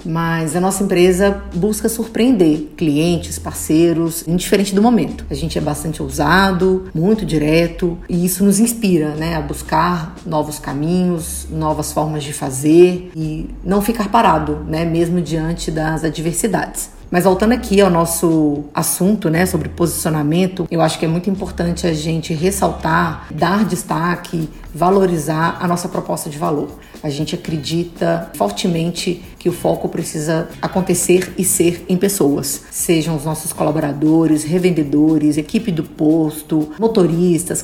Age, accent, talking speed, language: 40-59, Brazilian, 140 wpm, Portuguese